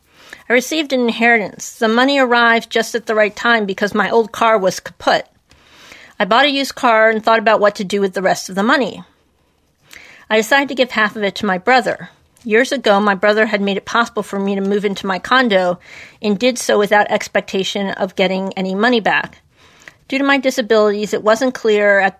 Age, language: 50-69, English